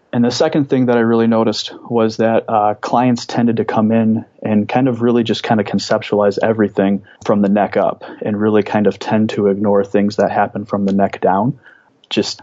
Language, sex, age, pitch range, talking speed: English, male, 30-49, 100-115 Hz, 210 wpm